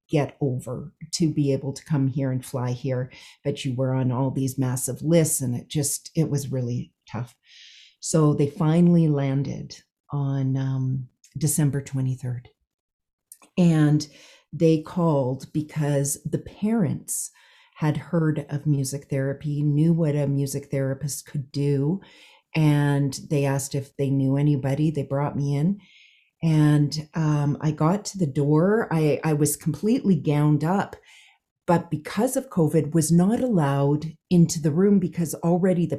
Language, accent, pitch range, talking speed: English, American, 140-170 Hz, 150 wpm